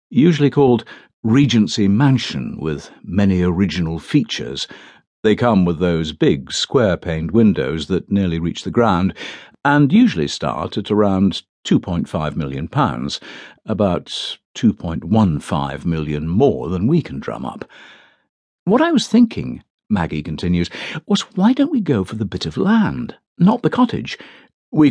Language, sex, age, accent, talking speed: English, male, 60-79, British, 135 wpm